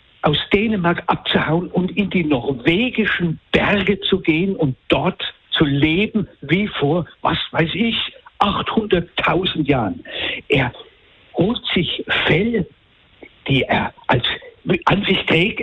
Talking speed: 120 wpm